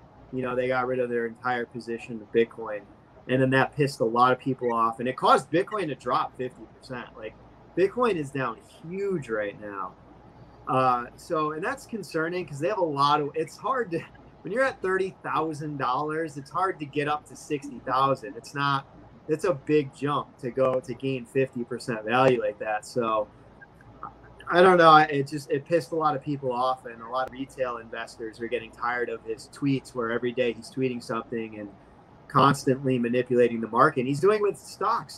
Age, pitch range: 30-49, 125-150 Hz